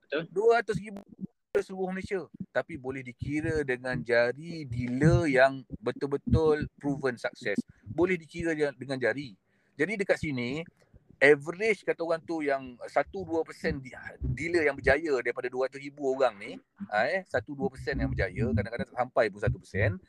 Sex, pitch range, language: male, 135-175 Hz, Malay